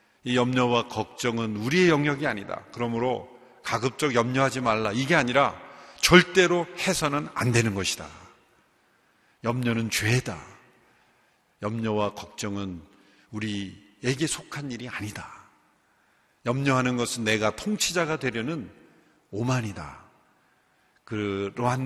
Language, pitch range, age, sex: Korean, 100-140 Hz, 50-69, male